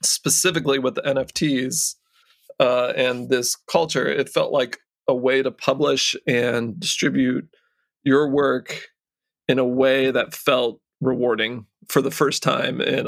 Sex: male